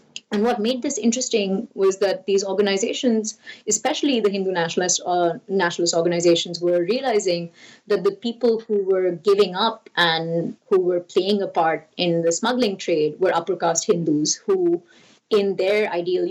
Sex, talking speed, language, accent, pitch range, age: female, 155 wpm, English, Indian, 165-205 Hz, 30-49